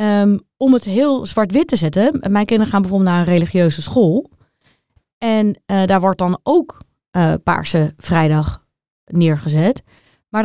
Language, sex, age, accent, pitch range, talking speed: Dutch, female, 30-49, Dutch, 175-220 Hz, 150 wpm